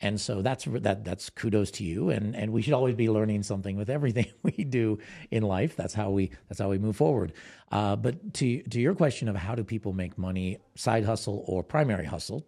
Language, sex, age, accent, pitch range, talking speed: English, male, 50-69, American, 95-115 Hz, 225 wpm